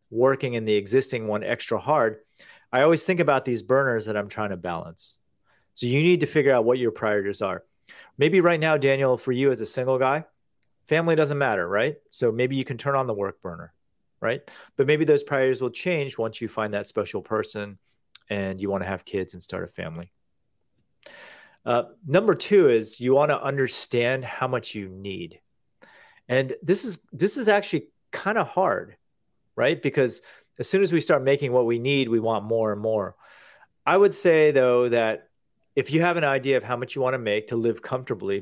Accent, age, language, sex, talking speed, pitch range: American, 30-49, English, male, 200 wpm, 110-140 Hz